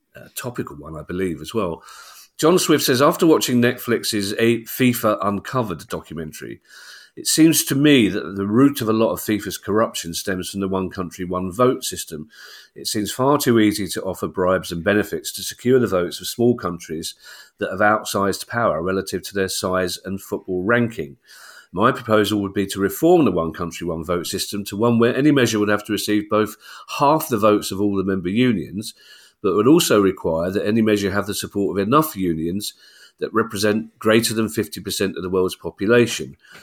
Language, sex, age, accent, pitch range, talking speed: English, male, 40-59, British, 95-115 Hz, 195 wpm